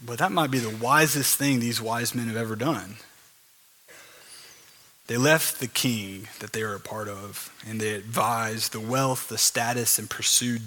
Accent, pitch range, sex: American, 115-150 Hz, male